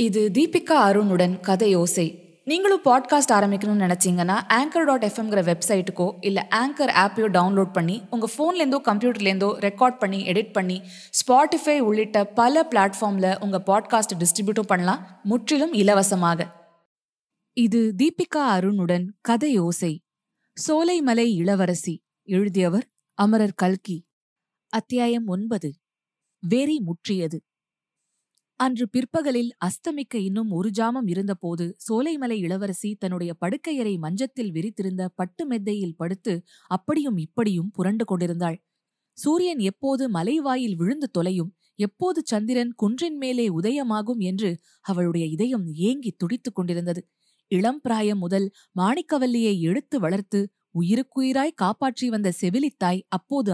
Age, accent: 20-39, native